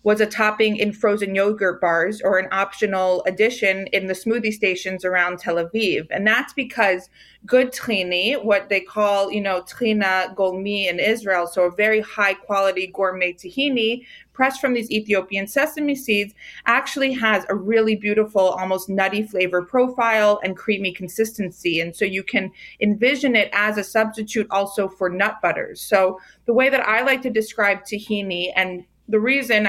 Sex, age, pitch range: female, 30-49, 190-220 Hz